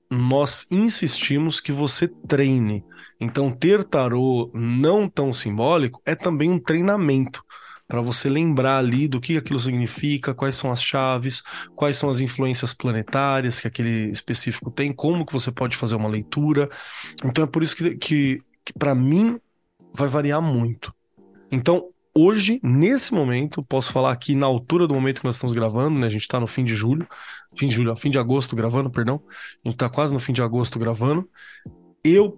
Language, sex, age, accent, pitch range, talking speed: Portuguese, male, 20-39, Brazilian, 120-150 Hz, 180 wpm